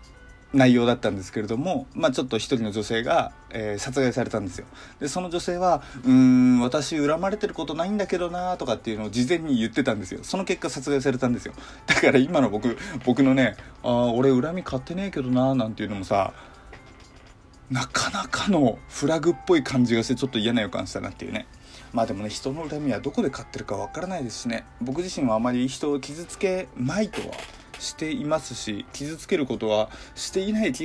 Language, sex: Japanese, male